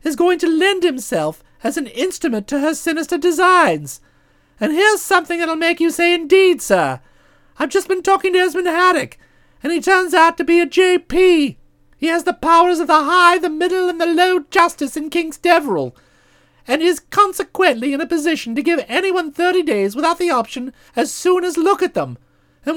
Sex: male